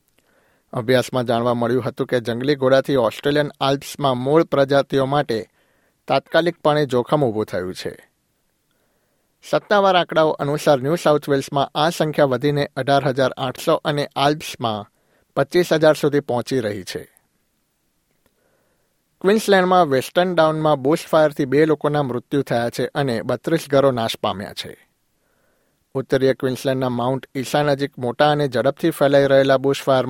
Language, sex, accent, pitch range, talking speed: Gujarati, male, native, 130-150 Hz, 120 wpm